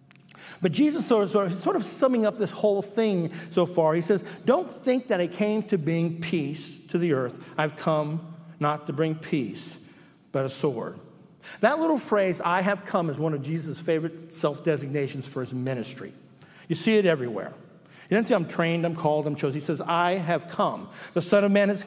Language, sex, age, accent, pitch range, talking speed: English, male, 50-69, American, 160-205 Hz, 210 wpm